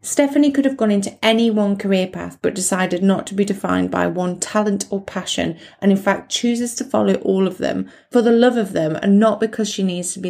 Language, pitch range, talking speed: English, 175-205 Hz, 240 wpm